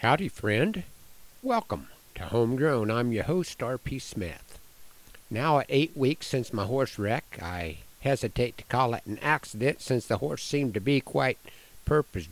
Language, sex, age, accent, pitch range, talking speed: English, male, 60-79, American, 110-135 Hz, 160 wpm